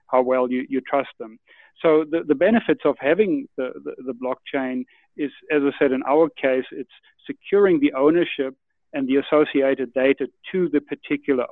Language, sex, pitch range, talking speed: English, male, 130-175 Hz, 170 wpm